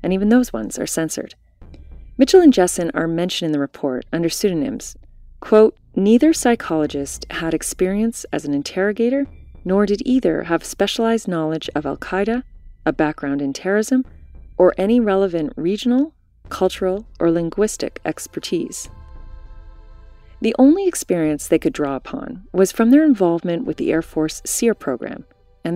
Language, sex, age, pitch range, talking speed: English, female, 30-49, 150-220 Hz, 145 wpm